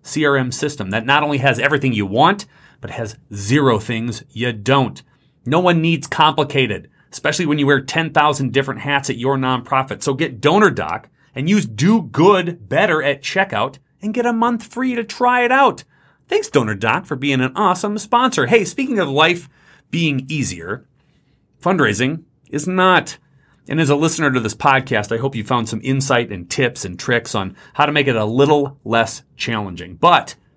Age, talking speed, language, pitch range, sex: 30-49, 180 wpm, English, 120-160 Hz, male